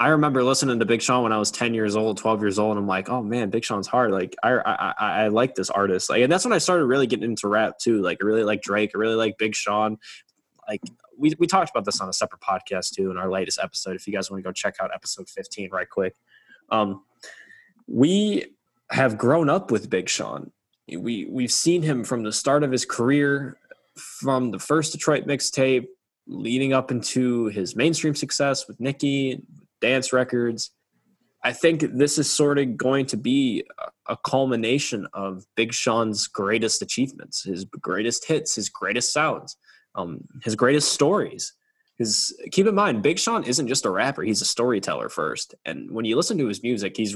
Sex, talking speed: male, 205 wpm